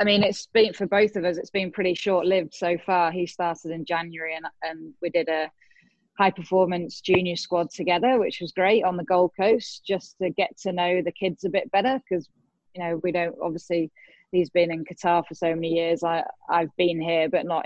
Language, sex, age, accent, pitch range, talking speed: English, female, 20-39, British, 170-190 Hz, 220 wpm